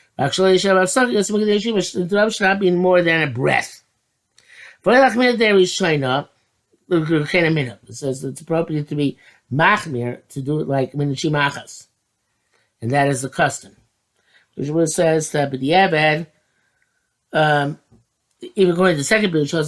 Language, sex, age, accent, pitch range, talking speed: English, male, 50-69, American, 135-175 Hz, 135 wpm